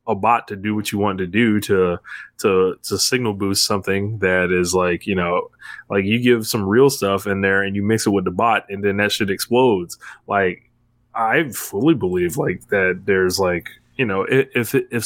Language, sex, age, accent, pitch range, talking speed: English, male, 20-39, American, 95-115 Hz, 205 wpm